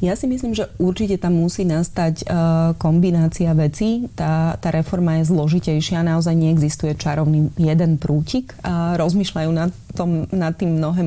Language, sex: Slovak, female